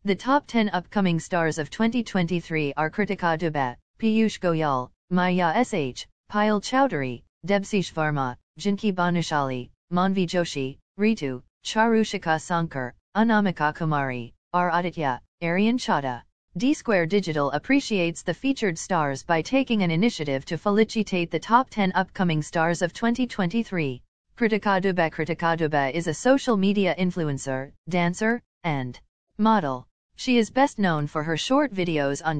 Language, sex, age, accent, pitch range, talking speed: English, female, 40-59, American, 155-220 Hz, 135 wpm